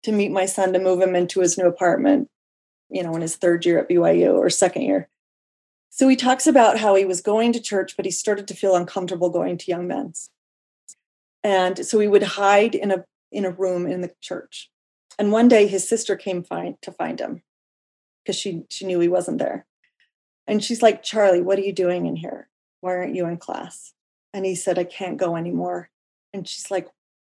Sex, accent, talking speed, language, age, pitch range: female, American, 215 wpm, English, 30-49, 185-225 Hz